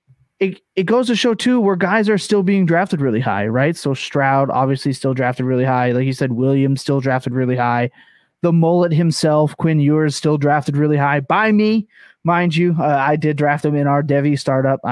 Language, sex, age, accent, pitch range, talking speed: English, male, 20-39, American, 135-175 Hz, 210 wpm